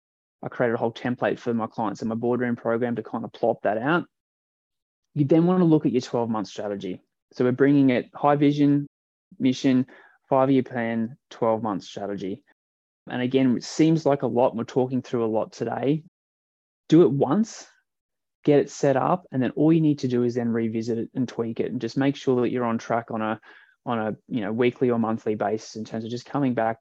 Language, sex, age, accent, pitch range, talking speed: English, male, 20-39, Australian, 115-140 Hz, 215 wpm